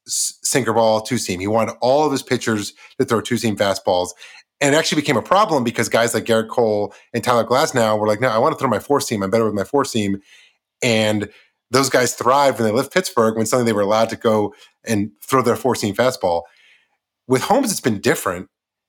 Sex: male